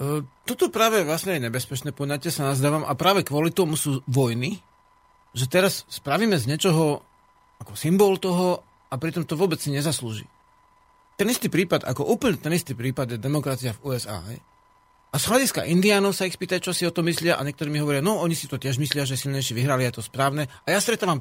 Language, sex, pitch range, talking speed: Slovak, male, 130-190 Hz, 205 wpm